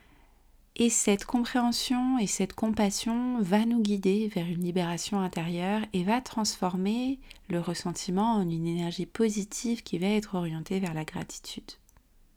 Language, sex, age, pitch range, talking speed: French, female, 30-49, 180-225 Hz, 140 wpm